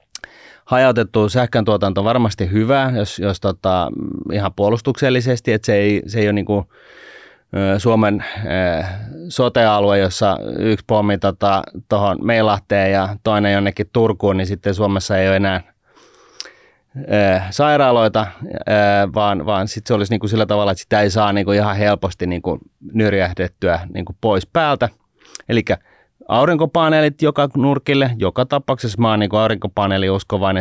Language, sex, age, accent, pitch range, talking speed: Finnish, male, 30-49, native, 95-115 Hz, 135 wpm